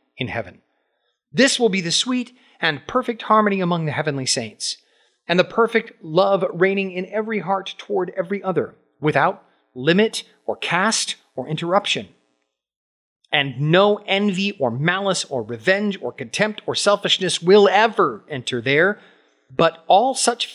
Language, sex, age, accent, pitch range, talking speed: English, male, 40-59, American, 150-220 Hz, 145 wpm